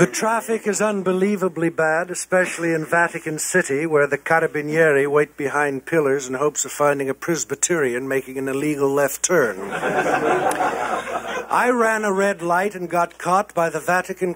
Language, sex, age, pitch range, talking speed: English, male, 60-79, 145-190 Hz, 155 wpm